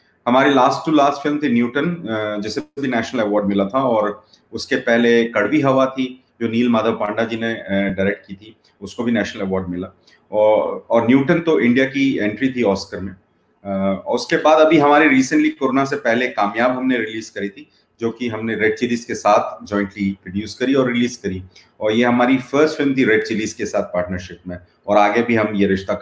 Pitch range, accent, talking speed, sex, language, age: 110-145 Hz, native, 200 wpm, male, Hindi, 30-49